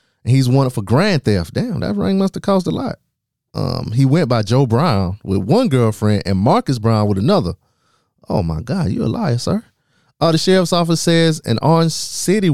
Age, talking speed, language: 20-39, 205 wpm, English